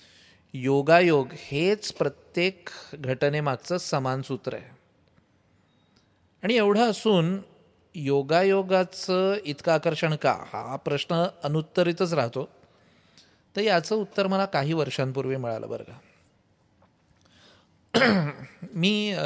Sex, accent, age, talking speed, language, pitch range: male, native, 30-49, 85 wpm, Marathi, 130-175 Hz